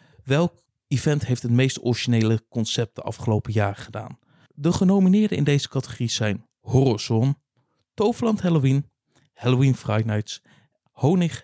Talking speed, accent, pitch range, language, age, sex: 125 wpm, Dutch, 115-145 Hz, Dutch, 50-69, male